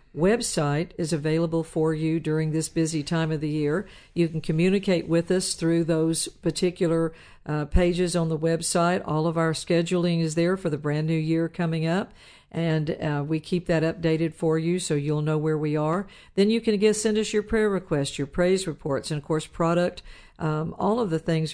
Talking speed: 205 wpm